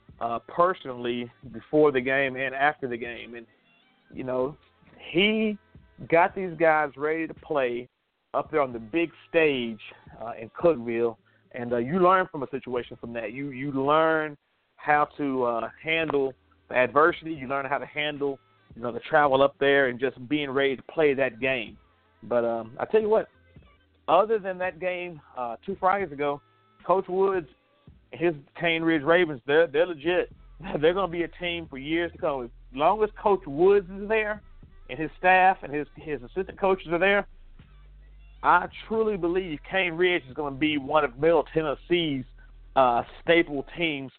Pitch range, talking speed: 125-175 Hz, 175 wpm